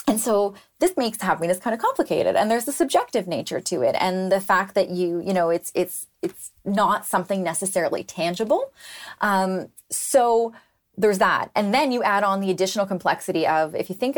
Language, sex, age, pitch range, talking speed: English, female, 20-39, 170-215 Hz, 195 wpm